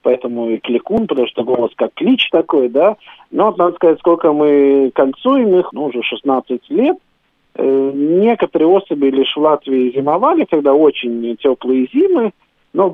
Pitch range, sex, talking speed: 120-185 Hz, male, 160 wpm